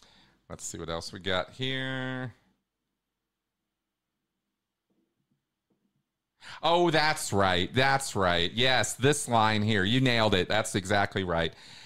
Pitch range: 100-130 Hz